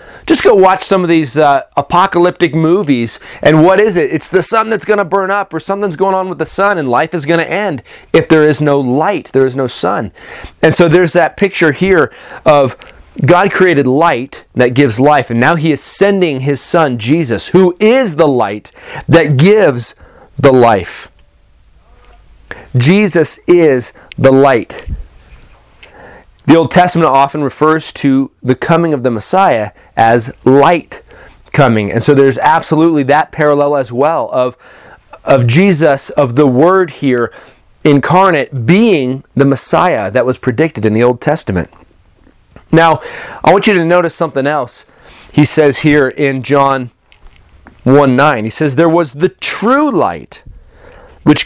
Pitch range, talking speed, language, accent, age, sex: 130-175 Hz, 160 wpm, English, American, 30-49, male